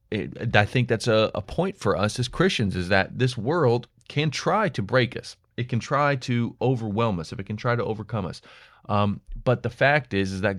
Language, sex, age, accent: English, male, 30-49, American